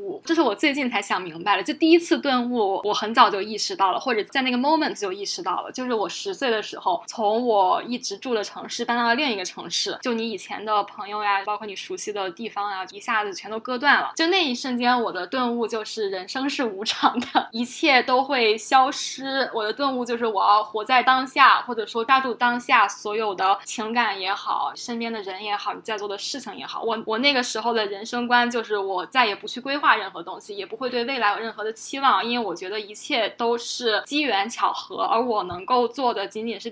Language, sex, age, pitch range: Chinese, female, 10-29, 215-265 Hz